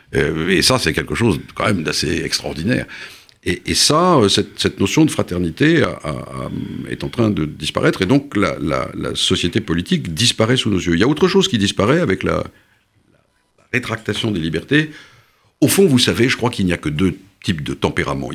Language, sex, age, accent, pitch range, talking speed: French, male, 50-69, French, 90-125 Hz, 195 wpm